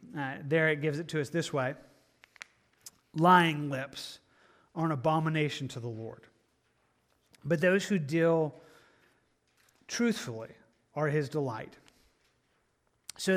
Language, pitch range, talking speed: English, 140-175 Hz, 115 wpm